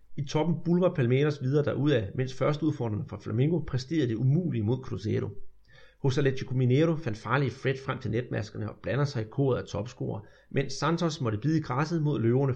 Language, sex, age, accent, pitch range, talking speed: Danish, male, 30-49, native, 120-160 Hz, 180 wpm